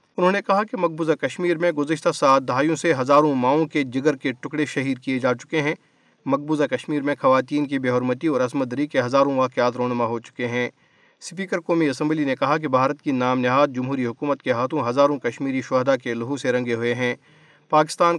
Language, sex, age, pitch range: Urdu, male, 40-59, 130-155 Hz